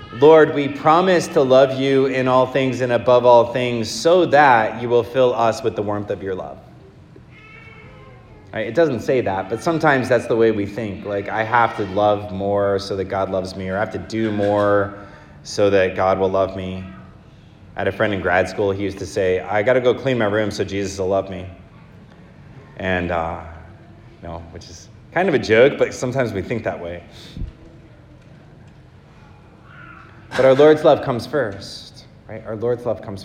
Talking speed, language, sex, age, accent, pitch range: 200 wpm, English, male, 30-49, American, 100-130 Hz